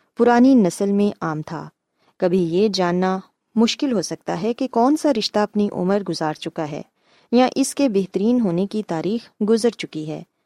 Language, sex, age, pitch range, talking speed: Urdu, female, 20-39, 180-240 Hz, 180 wpm